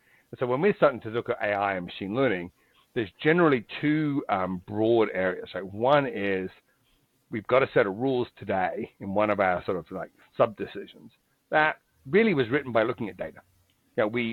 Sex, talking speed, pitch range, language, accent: male, 195 wpm, 100-125 Hz, English, British